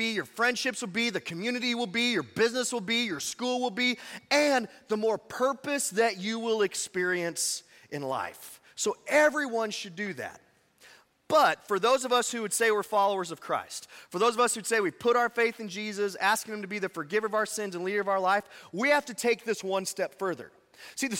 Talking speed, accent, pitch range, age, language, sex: 225 wpm, American, 210-265 Hz, 30-49, English, male